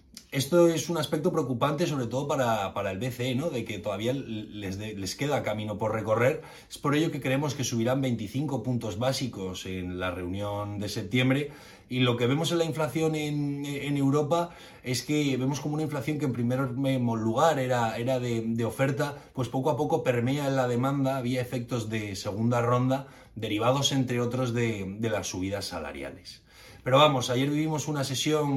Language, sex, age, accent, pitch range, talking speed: Spanish, male, 30-49, Spanish, 110-140 Hz, 185 wpm